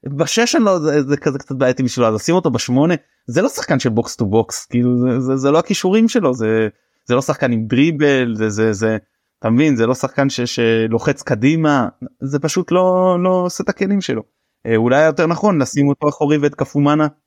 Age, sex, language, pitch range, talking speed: 20-39, male, Hebrew, 115-145 Hz, 200 wpm